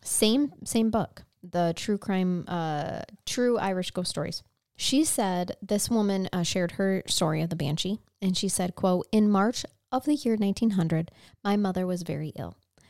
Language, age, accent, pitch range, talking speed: English, 20-39, American, 175-225 Hz, 170 wpm